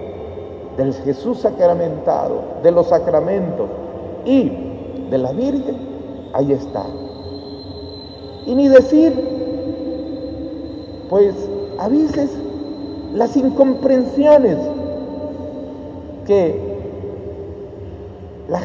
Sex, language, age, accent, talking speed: male, Spanish, 50-69, Mexican, 70 wpm